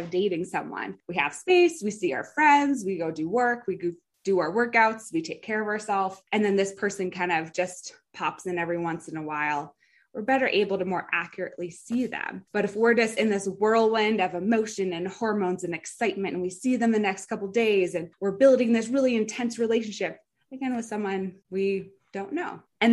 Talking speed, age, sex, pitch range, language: 210 wpm, 20-39, female, 180-230 Hz, English